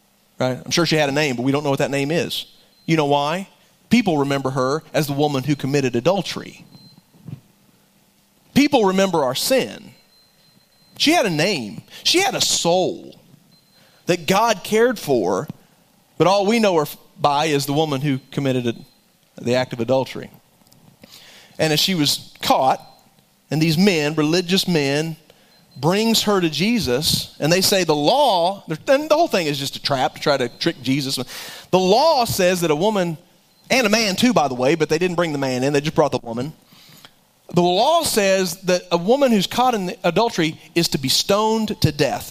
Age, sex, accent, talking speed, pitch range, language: 30-49, male, American, 185 wpm, 150-225 Hz, English